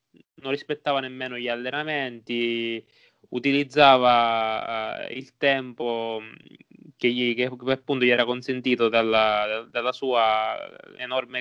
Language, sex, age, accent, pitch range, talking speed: Italian, male, 20-39, native, 115-135 Hz, 90 wpm